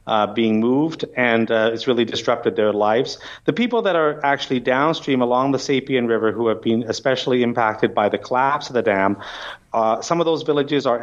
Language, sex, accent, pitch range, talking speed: English, male, American, 115-130 Hz, 200 wpm